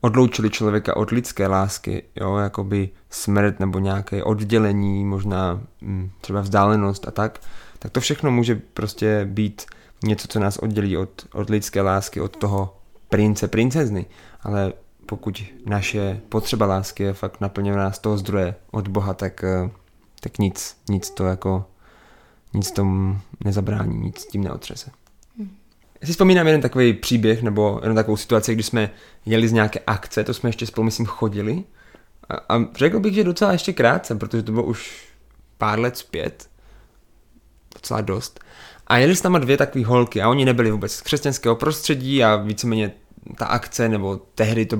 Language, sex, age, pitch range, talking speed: English, male, 20-39, 100-115 Hz, 155 wpm